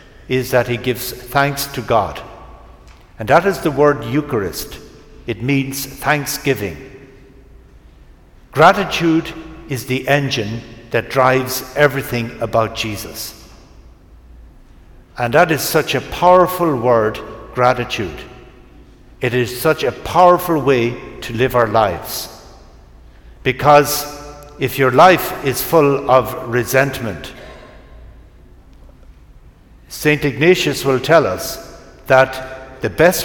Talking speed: 105 wpm